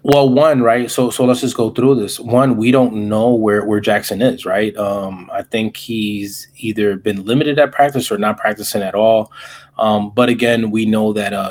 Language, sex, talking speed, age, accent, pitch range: English, male, 205 wpm, 20-39, American, 105-125 Hz